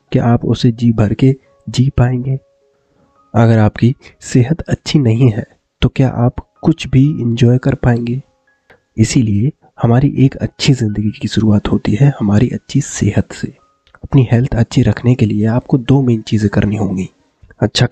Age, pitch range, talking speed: 20-39, 105-130 Hz, 160 wpm